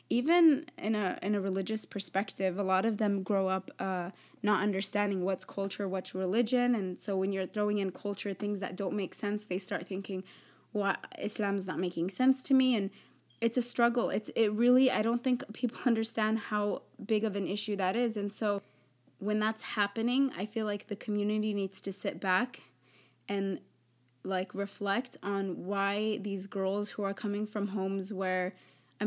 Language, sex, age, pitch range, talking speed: English, female, 20-39, 190-215 Hz, 190 wpm